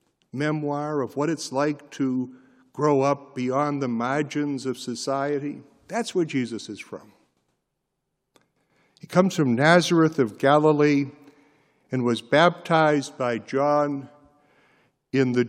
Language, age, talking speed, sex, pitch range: English, 60-79, 120 wpm, male, 135-175 Hz